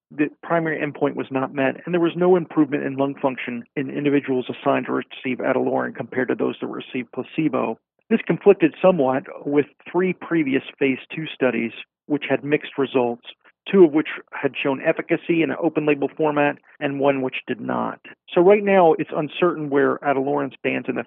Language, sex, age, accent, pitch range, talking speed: English, male, 40-59, American, 130-155 Hz, 180 wpm